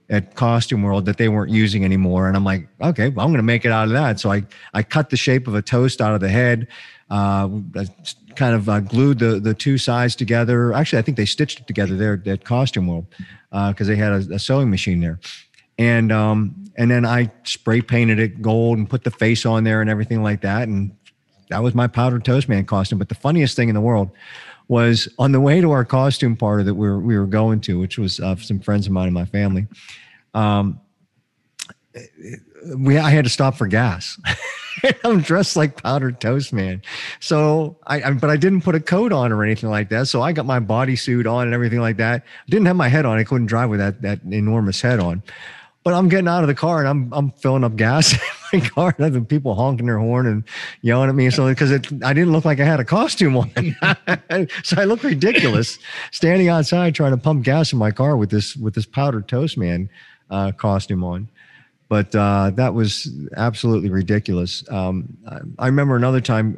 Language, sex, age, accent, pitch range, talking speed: English, male, 40-59, American, 105-135 Hz, 220 wpm